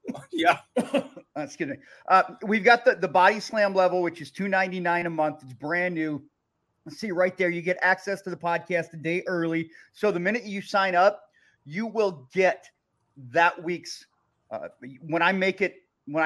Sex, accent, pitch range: male, American, 165-200 Hz